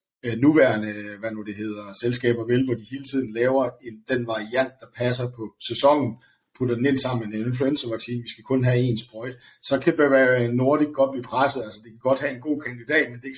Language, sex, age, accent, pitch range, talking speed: Danish, male, 60-79, native, 115-135 Hz, 220 wpm